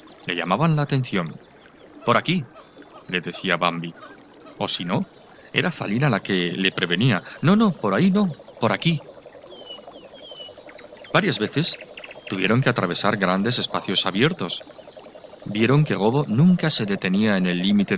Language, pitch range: Spanish, 95-145 Hz